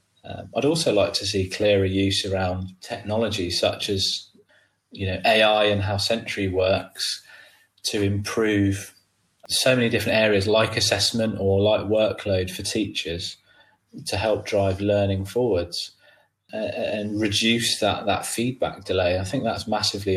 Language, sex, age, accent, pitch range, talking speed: English, male, 20-39, British, 100-115 Hz, 145 wpm